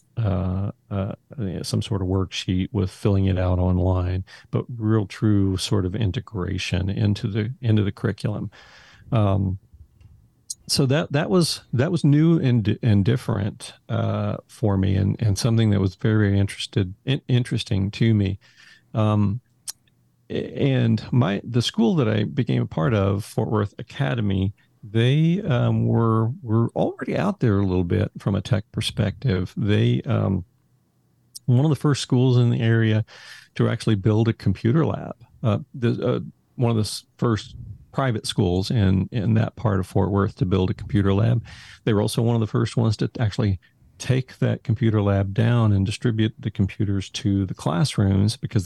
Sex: male